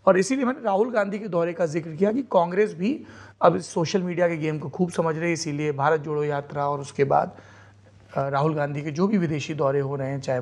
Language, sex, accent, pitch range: Hindi, male, native, 135-170 Hz